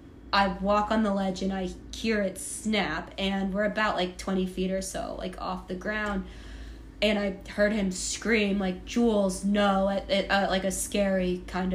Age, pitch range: 20-39, 190-210 Hz